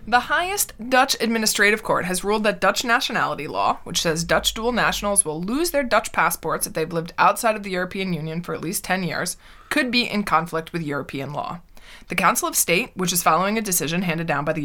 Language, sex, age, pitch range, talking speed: English, female, 20-39, 160-210 Hz, 220 wpm